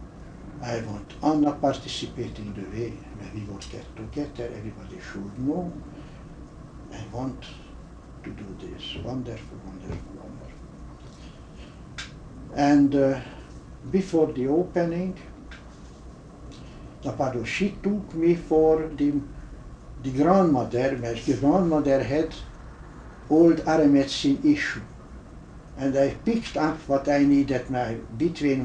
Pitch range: 110-150 Hz